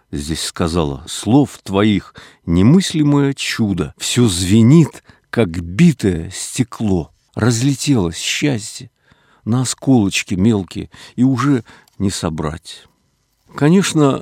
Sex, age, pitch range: male, 50-69, 105-130 Hz